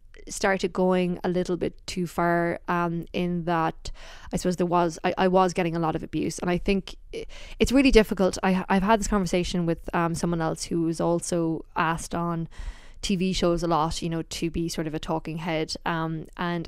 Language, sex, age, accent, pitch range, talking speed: English, female, 20-39, Irish, 170-200 Hz, 200 wpm